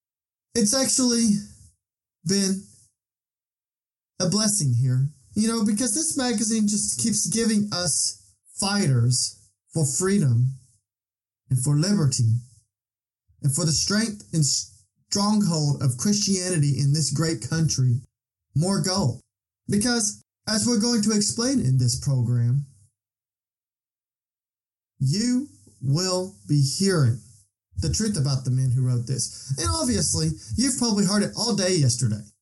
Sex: male